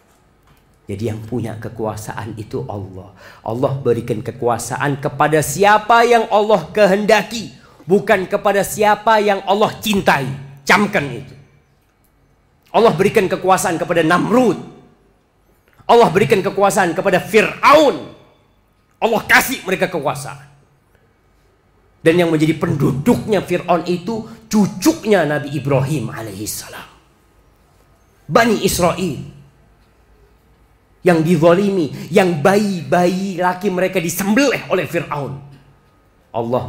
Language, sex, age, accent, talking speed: Indonesian, male, 40-59, native, 95 wpm